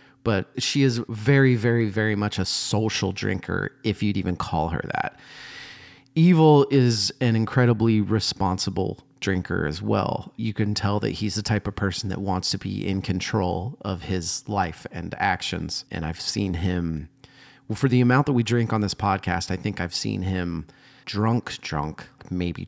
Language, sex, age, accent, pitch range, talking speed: English, male, 30-49, American, 95-120 Hz, 170 wpm